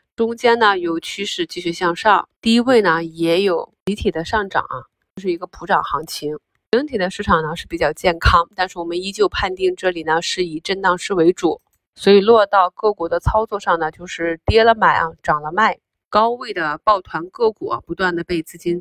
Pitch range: 165-200 Hz